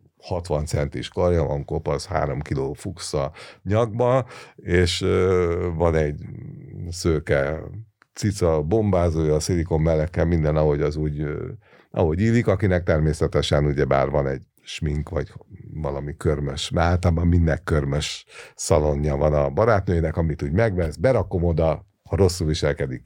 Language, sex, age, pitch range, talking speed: Hungarian, male, 50-69, 75-100 Hz, 120 wpm